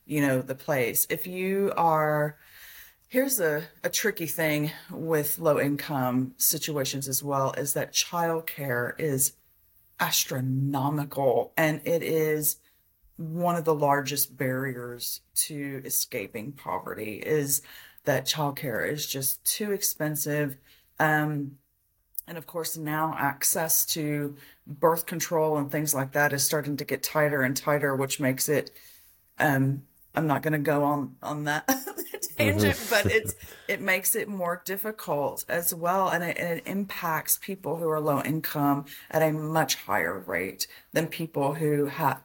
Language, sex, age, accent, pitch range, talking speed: English, female, 30-49, American, 140-160 Hz, 145 wpm